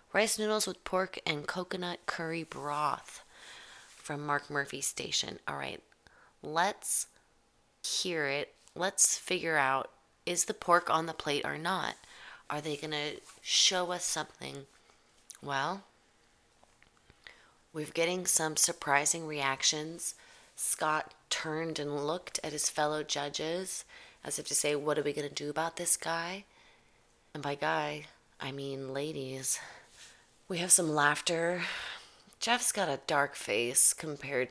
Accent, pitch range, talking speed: American, 145-180 Hz, 135 wpm